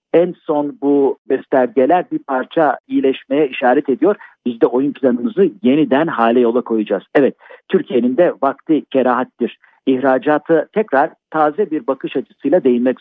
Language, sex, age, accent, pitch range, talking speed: Turkish, male, 50-69, native, 125-175 Hz, 135 wpm